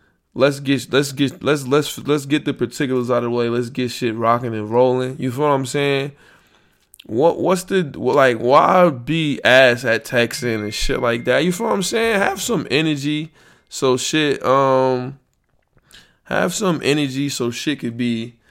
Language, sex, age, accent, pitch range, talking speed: English, male, 20-39, American, 120-170 Hz, 185 wpm